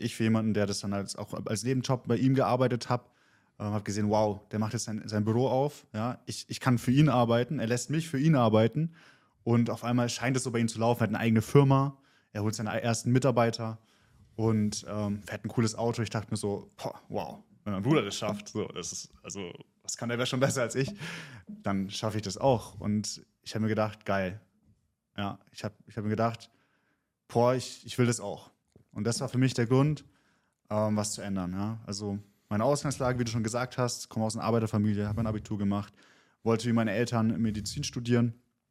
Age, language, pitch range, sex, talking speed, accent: 20-39, German, 105-125 Hz, male, 220 wpm, German